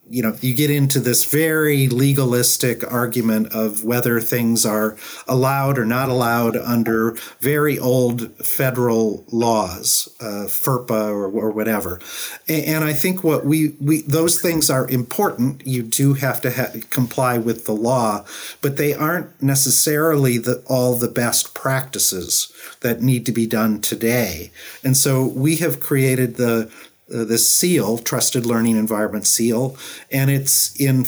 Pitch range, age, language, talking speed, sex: 115-140 Hz, 40-59, English, 150 wpm, male